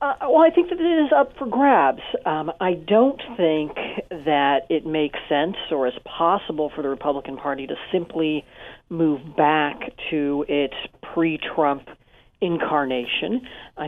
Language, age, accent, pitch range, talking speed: English, 40-59, American, 145-170 Hz, 145 wpm